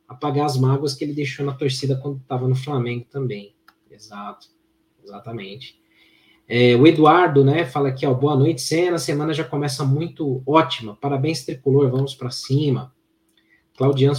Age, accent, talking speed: 20-39, Brazilian, 155 wpm